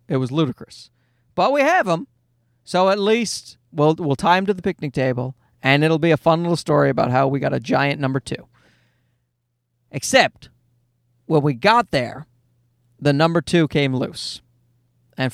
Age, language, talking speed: 40-59, English, 170 wpm